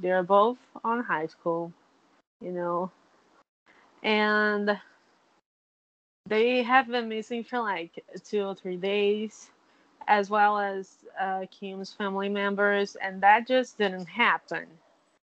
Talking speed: 115 wpm